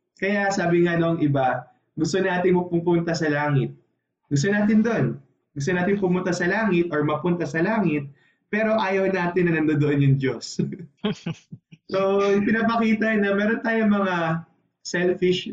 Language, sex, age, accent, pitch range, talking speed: Filipino, male, 20-39, native, 150-200 Hz, 140 wpm